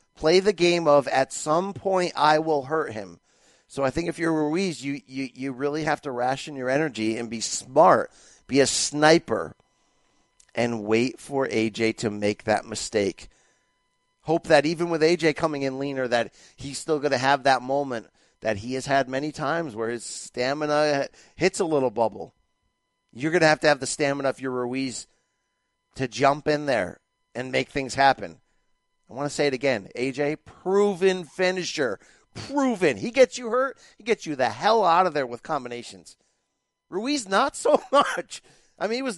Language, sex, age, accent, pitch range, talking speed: English, male, 40-59, American, 130-165 Hz, 185 wpm